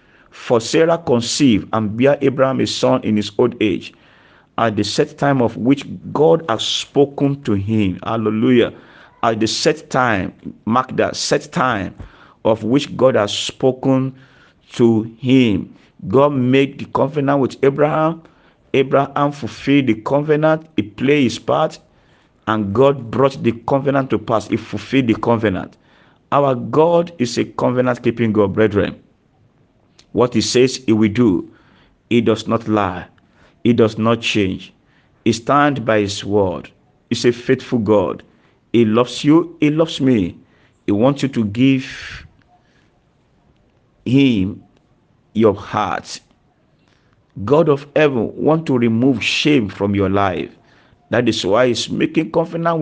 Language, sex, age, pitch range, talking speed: English, male, 50-69, 110-140 Hz, 140 wpm